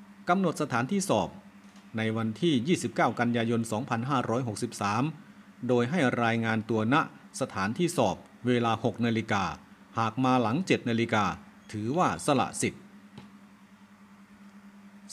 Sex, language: male, Thai